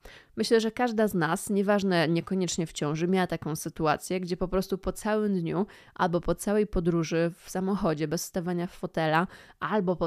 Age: 20-39